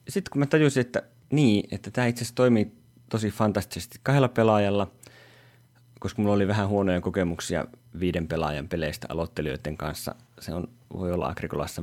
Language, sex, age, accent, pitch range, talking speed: Finnish, male, 30-49, native, 85-120 Hz, 155 wpm